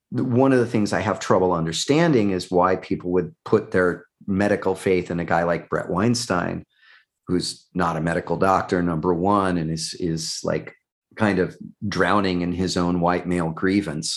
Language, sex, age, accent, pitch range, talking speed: English, male, 40-59, American, 90-120 Hz, 180 wpm